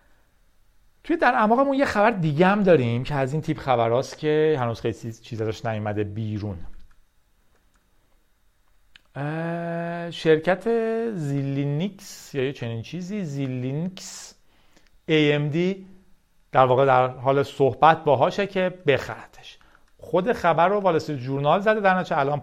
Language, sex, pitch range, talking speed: Persian, male, 130-185 Hz, 115 wpm